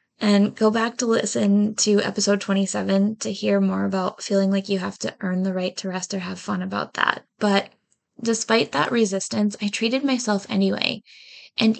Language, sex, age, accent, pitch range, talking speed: English, female, 10-29, American, 190-220 Hz, 185 wpm